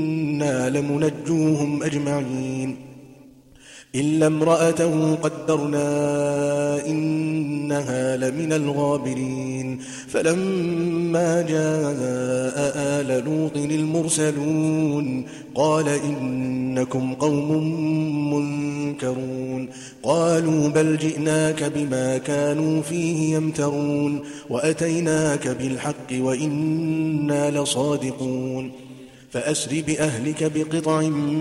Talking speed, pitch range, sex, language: 60 wpm, 130-155 Hz, male, English